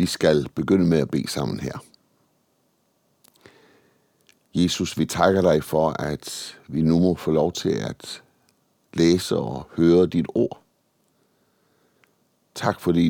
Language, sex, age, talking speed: Danish, male, 60-79, 130 wpm